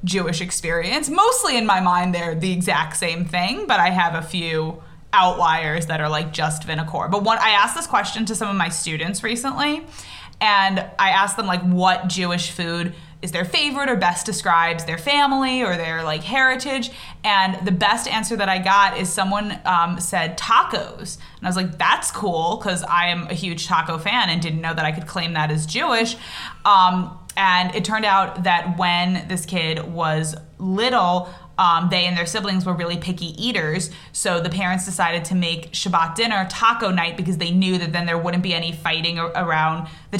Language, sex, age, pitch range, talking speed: English, female, 20-39, 170-205 Hz, 195 wpm